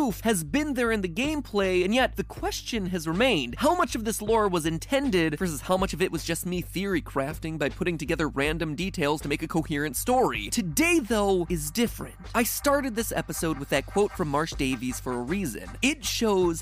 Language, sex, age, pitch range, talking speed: English, male, 20-39, 150-215 Hz, 210 wpm